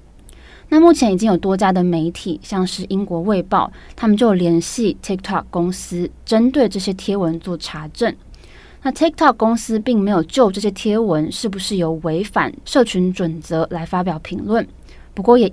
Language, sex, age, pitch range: Chinese, female, 20-39, 170-220 Hz